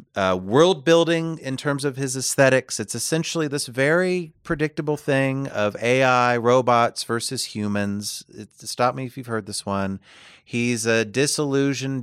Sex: male